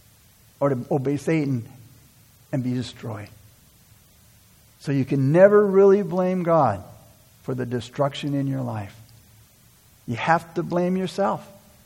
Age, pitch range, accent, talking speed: 60-79, 125-190 Hz, American, 125 wpm